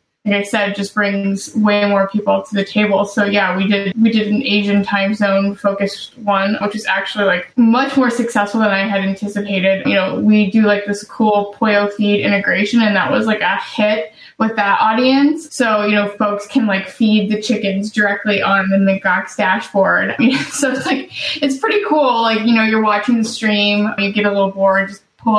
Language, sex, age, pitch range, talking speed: English, female, 10-29, 195-225 Hz, 210 wpm